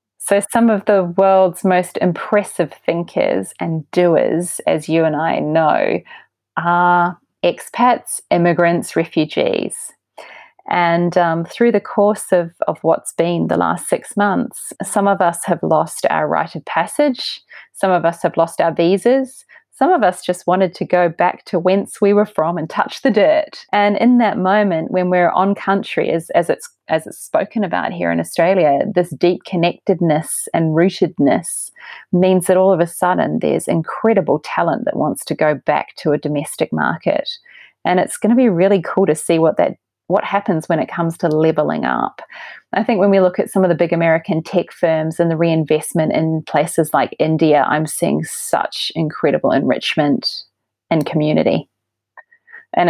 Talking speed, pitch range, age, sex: 175 wpm, 160-200 Hz, 30-49, female